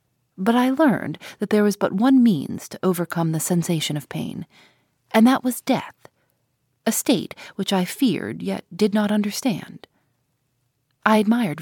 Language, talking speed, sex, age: English, 155 wpm, female, 30-49